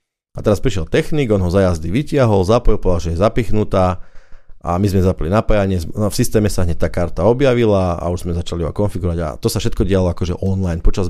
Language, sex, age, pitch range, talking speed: Czech, male, 30-49, 90-115 Hz, 210 wpm